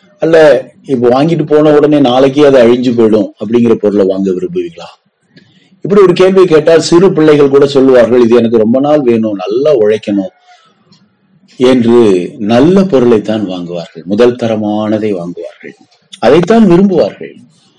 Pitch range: 120-190 Hz